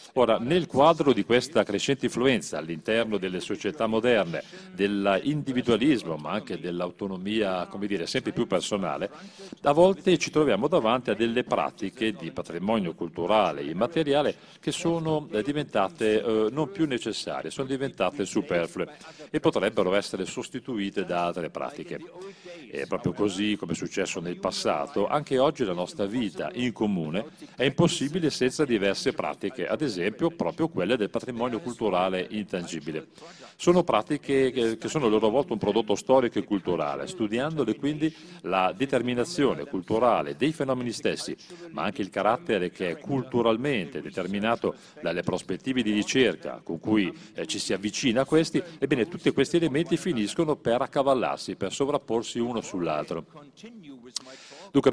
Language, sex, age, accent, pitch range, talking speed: Italian, male, 40-59, native, 105-150 Hz, 140 wpm